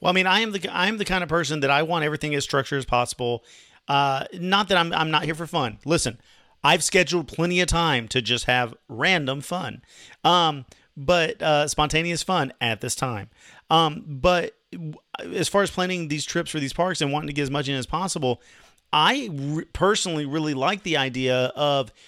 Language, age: English, 40-59